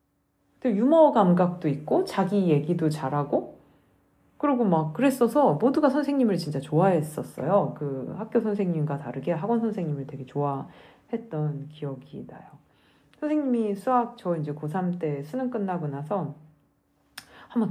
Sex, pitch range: female, 145-220 Hz